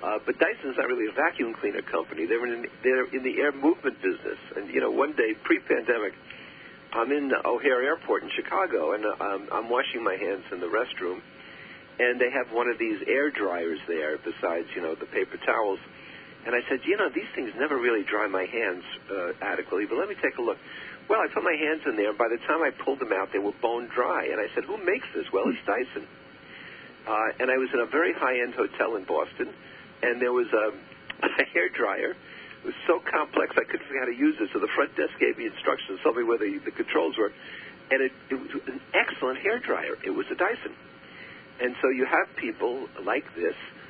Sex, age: male, 50-69